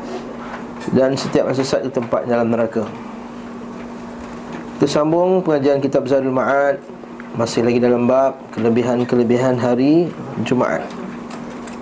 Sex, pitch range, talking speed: male, 130-165 Hz, 100 wpm